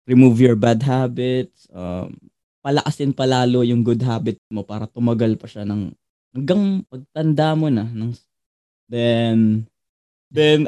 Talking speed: 130 wpm